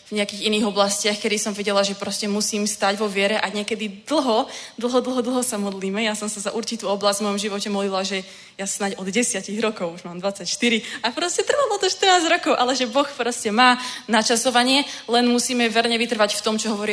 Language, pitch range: Czech, 185-220 Hz